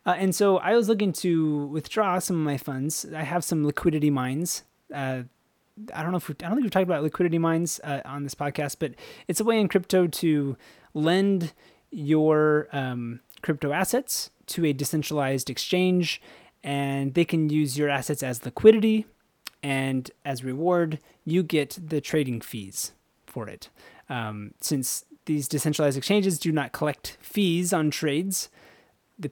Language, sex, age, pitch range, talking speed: English, male, 20-39, 140-180 Hz, 165 wpm